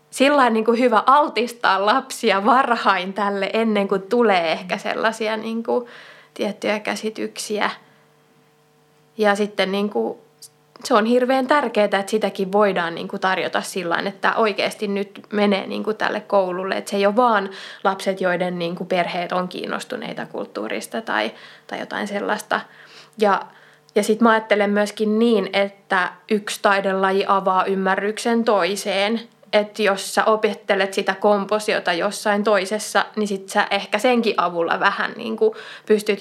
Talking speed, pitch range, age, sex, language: 135 wpm, 195-220 Hz, 20-39, female, Finnish